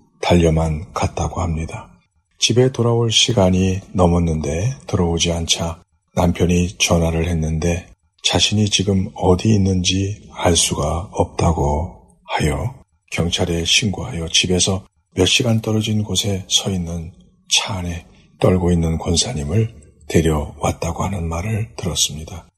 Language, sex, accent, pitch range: Korean, male, native, 85-100 Hz